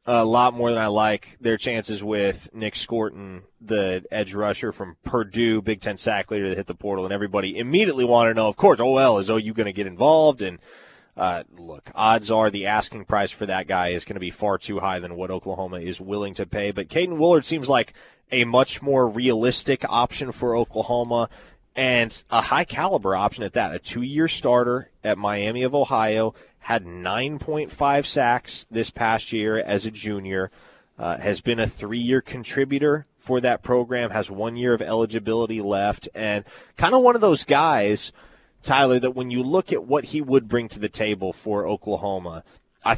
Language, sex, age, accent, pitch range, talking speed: English, male, 20-39, American, 100-125 Hz, 190 wpm